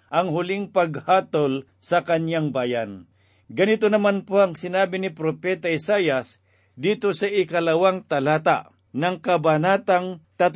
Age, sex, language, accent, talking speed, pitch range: 50-69, male, Filipino, native, 115 wpm, 150-190 Hz